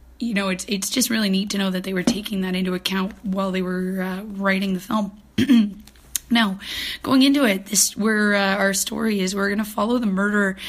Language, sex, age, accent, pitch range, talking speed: English, female, 20-39, American, 195-220 Hz, 220 wpm